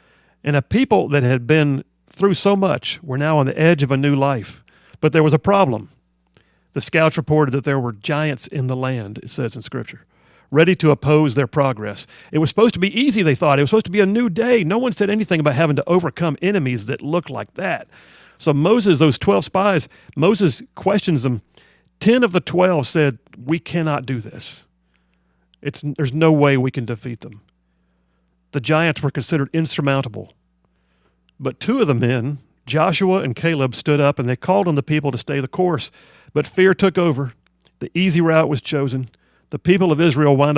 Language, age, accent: English, 40-59, American